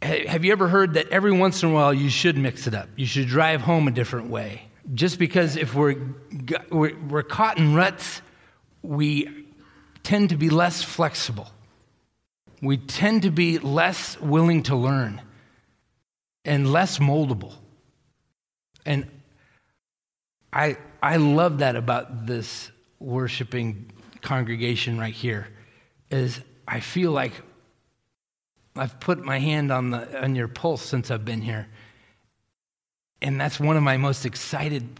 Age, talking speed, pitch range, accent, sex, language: 40-59, 140 wpm, 120-150 Hz, American, male, English